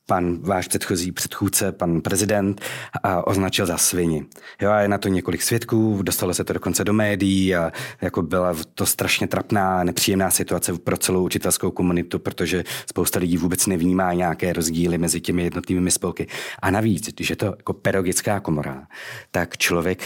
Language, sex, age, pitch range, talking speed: Czech, male, 30-49, 90-110 Hz, 165 wpm